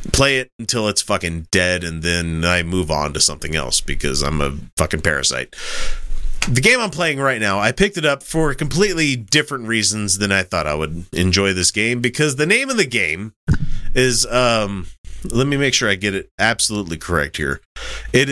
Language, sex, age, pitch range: English, male, 30-49, 95-135 Hz